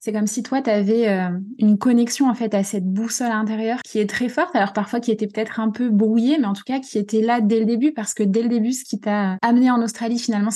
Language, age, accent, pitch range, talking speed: French, 20-39, French, 205-245 Hz, 280 wpm